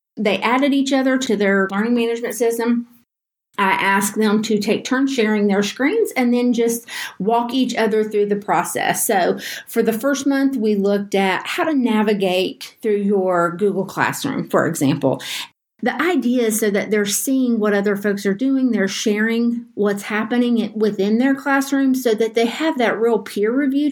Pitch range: 205-245 Hz